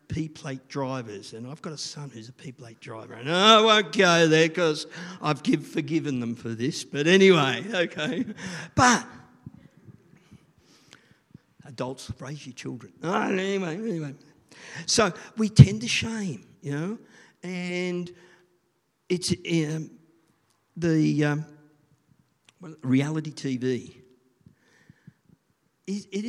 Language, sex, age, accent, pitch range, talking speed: English, male, 50-69, Australian, 130-170 Hz, 105 wpm